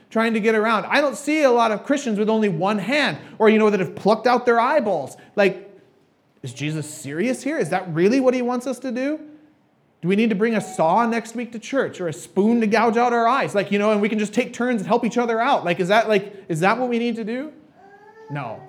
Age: 30-49